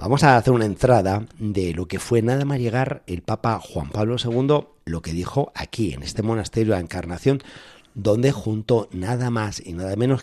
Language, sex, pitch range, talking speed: Spanish, male, 100-145 Hz, 200 wpm